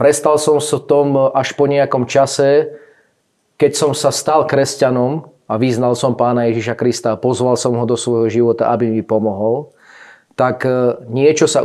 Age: 30-49